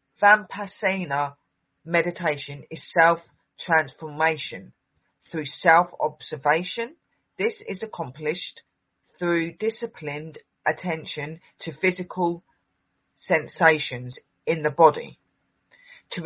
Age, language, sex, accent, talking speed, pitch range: 40-59, English, female, British, 80 wpm, 150-185 Hz